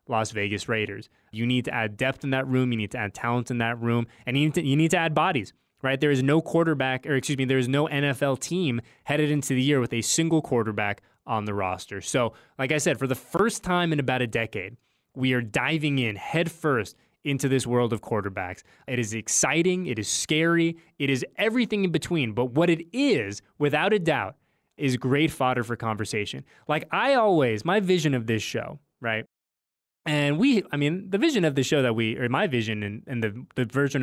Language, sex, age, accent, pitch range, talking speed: English, male, 20-39, American, 110-150 Hz, 215 wpm